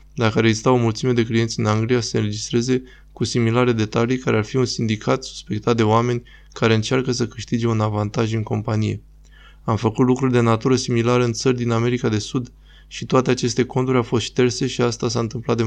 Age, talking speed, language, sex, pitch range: 20-39, 210 wpm, Romanian, male, 115-125 Hz